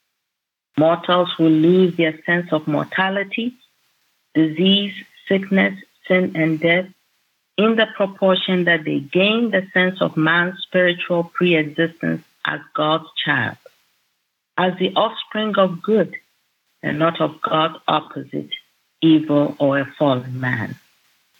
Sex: female